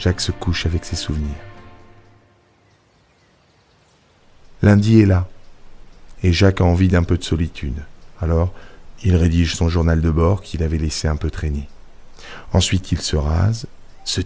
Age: 50-69